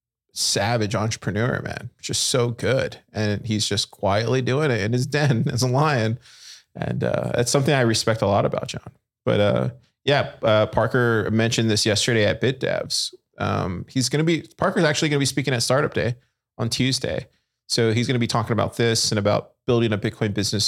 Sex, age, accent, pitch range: male, 20-39, American, 105-125 Hz